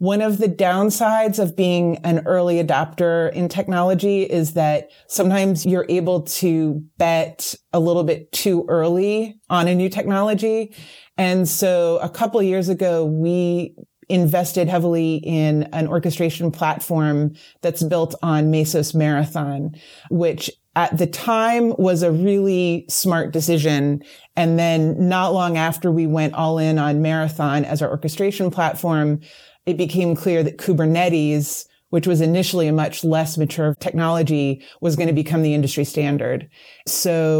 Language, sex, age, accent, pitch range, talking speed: English, female, 30-49, American, 155-180 Hz, 145 wpm